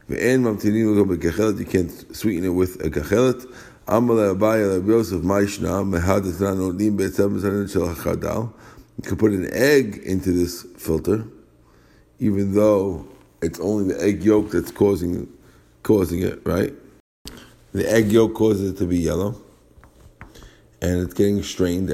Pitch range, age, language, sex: 90-110 Hz, 50-69, English, male